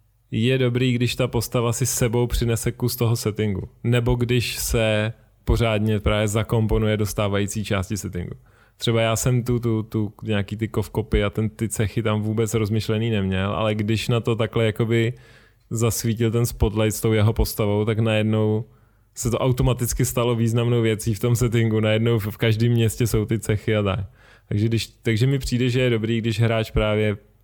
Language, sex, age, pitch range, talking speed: Czech, male, 20-39, 105-115 Hz, 175 wpm